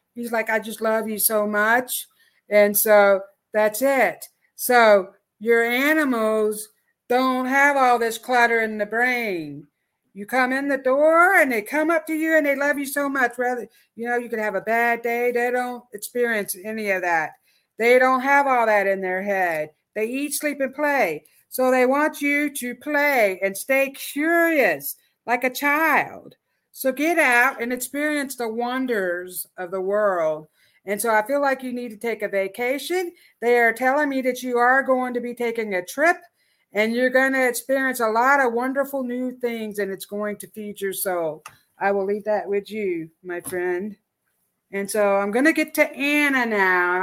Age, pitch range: 50-69, 210-270 Hz